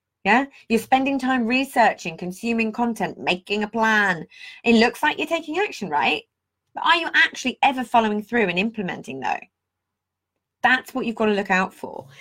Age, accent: 20-39, British